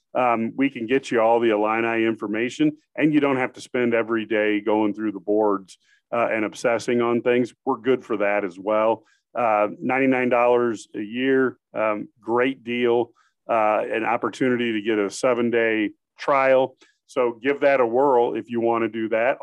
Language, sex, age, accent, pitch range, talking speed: English, male, 40-59, American, 115-140 Hz, 185 wpm